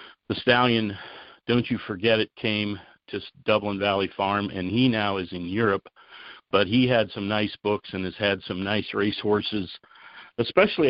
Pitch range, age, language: 95-110 Hz, 50-69, English